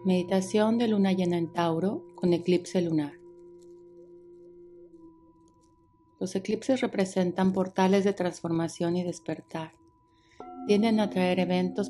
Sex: female